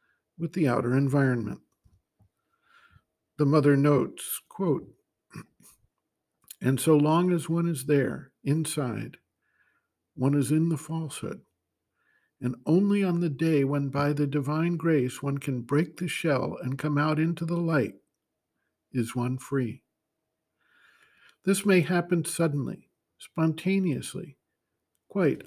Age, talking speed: 60-79, 120 wpm